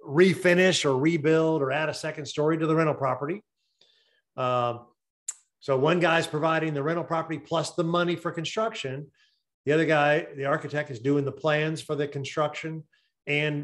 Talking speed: 165 wpm